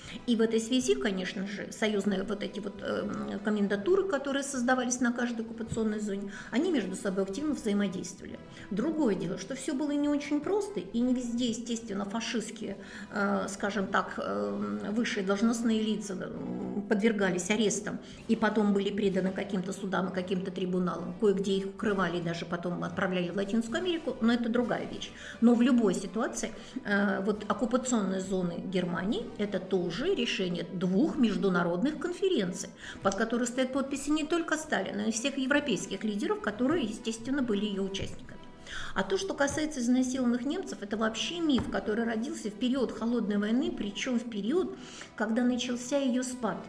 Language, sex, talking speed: Russian, female, 150 wpm